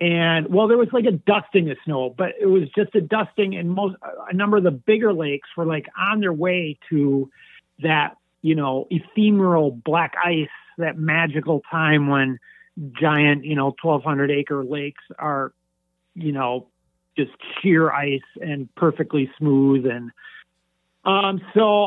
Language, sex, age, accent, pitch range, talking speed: English, male, 40-59, American, 145-180 Hz, 155 wpm